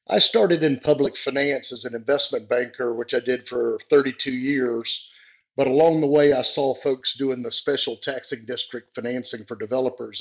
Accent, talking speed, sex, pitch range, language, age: American, 175 wpm, male, 120-145 Hz, English, 50-69